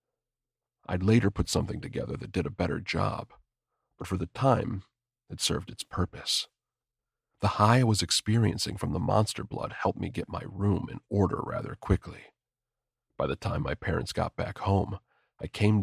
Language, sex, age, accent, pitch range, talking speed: English, male, 40-59, American, 95-120 Hz, 175 wpm